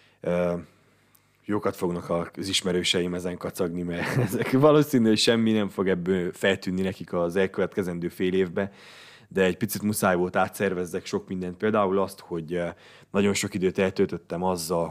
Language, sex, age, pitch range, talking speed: Hungarian, male, 20-39, 90-100 Hz, 145 wpm